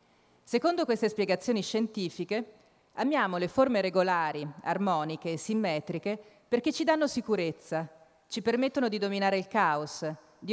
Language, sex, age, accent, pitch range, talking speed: Italian, female, 40-59, native, 170-225 Hz, 125 wpm